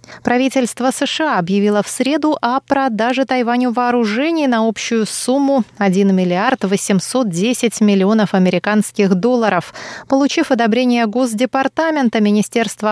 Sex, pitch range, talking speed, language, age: female, 195-250 Hz, 100 wpm, Russian, 20-39